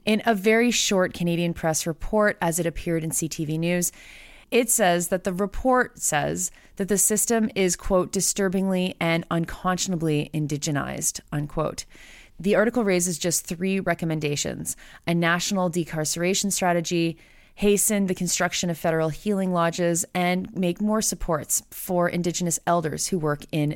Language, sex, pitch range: English, female, 155-190 Hz